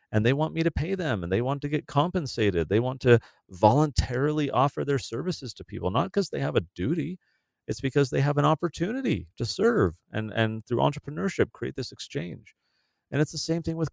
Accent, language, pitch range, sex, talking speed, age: American, English, 110-145 Hz, male, 210 wpm, 40-59